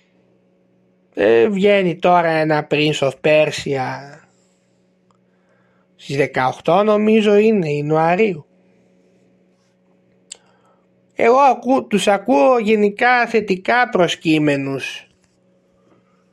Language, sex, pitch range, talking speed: Greek, male, 140-205 Hz, 70 wpm